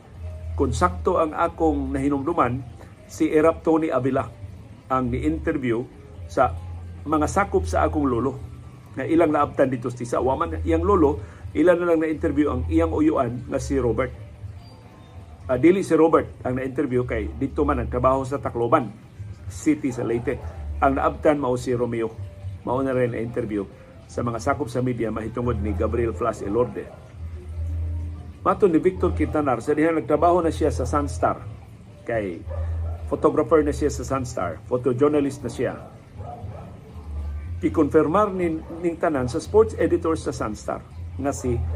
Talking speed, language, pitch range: 145 wpm, Filipino, 100-150 Hz